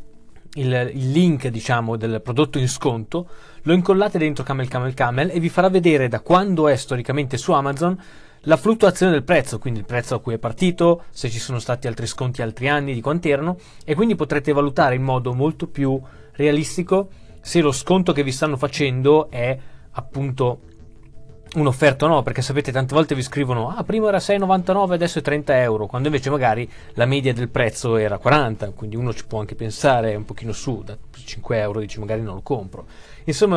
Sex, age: male, 20-39